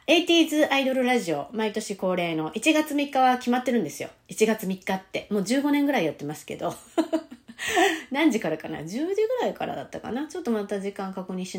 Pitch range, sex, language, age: 170-270 Hz, female, Japanese, 30-49